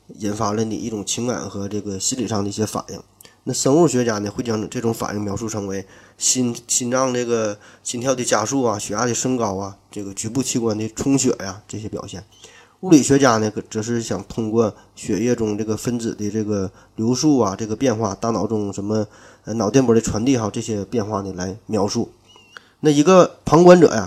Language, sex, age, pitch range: Chinese, male, 20-39, 105-125 Hz